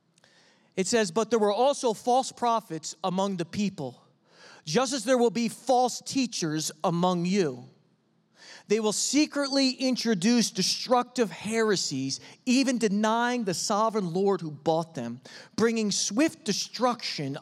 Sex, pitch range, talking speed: male, 185-245 Hz, 125 wpm